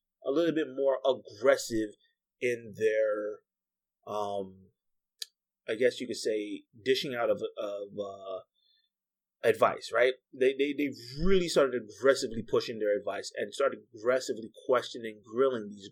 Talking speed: 130 wpm